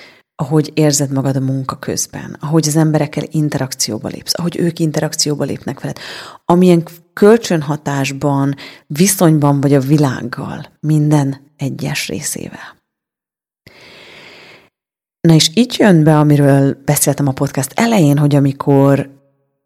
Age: 30-49